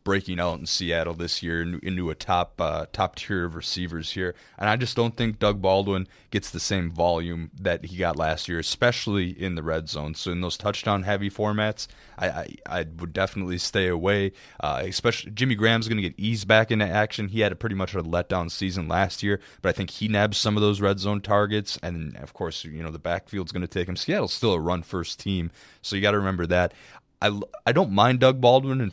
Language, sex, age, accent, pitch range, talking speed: English, male, 20-39, American, 85-105 Hz, 230 wpm